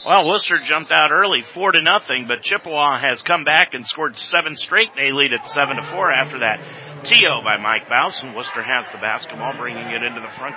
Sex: male